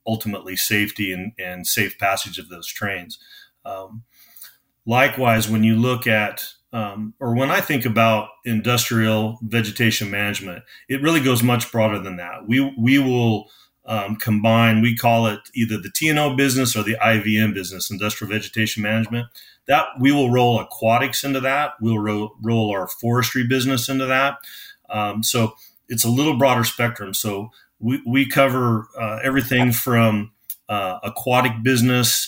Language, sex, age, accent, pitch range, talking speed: English, male, 40-59, American, 105-125 Hz, 150 wpm